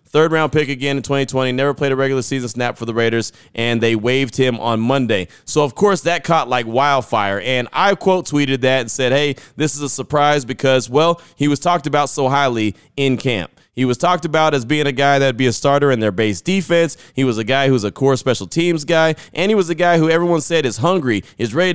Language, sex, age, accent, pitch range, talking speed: English, male, 30-49, American, 125-160 Hz, 245 wpm